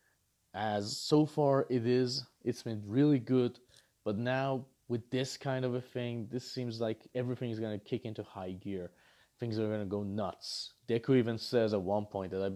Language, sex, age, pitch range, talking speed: English, male, 30-49, 110-150 Hz, 200 wpm